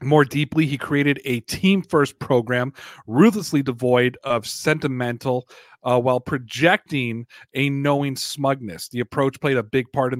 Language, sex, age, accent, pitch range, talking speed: English, male, 40-59, American, 125-155 Hz, 140 wpm